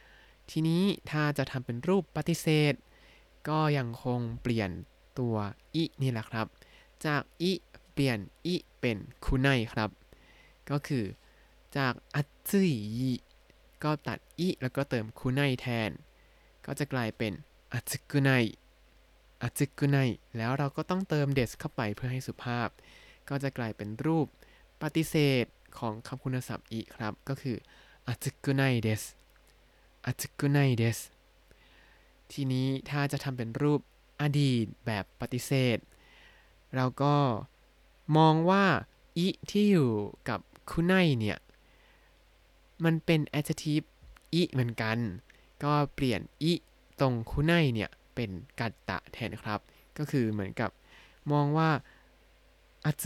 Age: 20-39